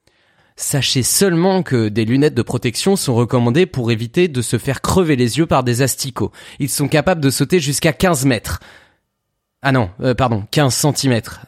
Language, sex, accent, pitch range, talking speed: French, male, French, 120-160 Hz, 180 wpm